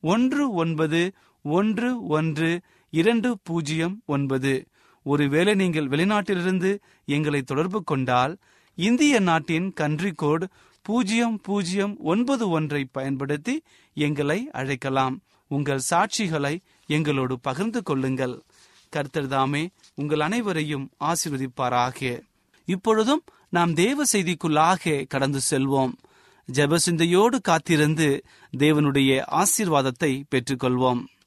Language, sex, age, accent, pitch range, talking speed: Tamil, male, 30-49, native, 140-200 Hz, 85 wpm